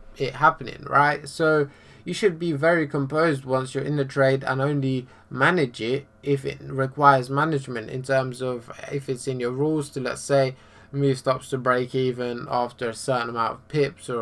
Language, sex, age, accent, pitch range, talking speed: English, male, 20-39, British, 130-150 Hz, 190 wpm